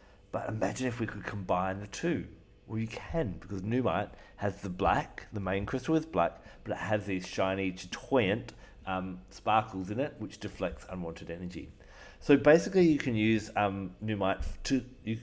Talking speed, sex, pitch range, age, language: 175 wpm, male, 95-120 Hz, 40-59, English